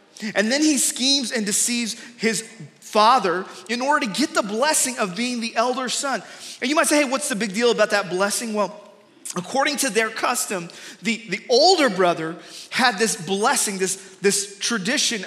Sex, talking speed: male, 180 wpm